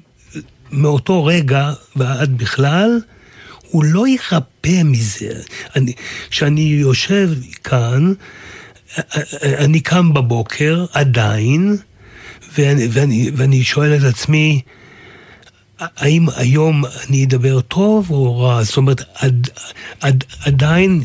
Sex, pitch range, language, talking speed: male, 130-160 Hz, Hebrew, 95 wpm